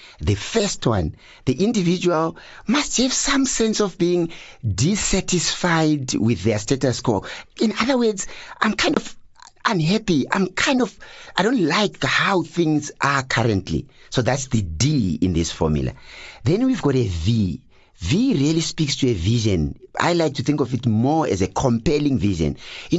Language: English